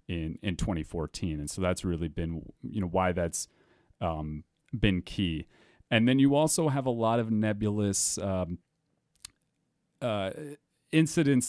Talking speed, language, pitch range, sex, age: 140 wpm, English, 85-105 Hz, male, 30-49